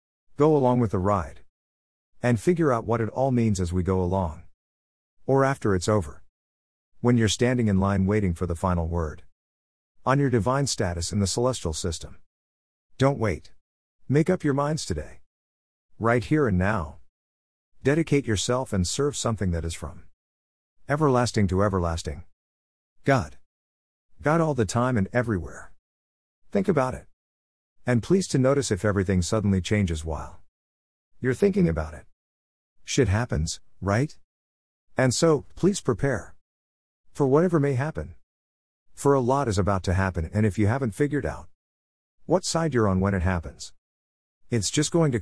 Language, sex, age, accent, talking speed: English, male, 50-69, American, 155 wpm